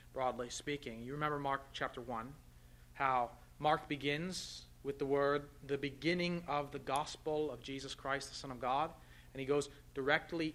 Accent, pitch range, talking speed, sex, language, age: American, 115-140 Hz, 165 wpm, male, English, 30-49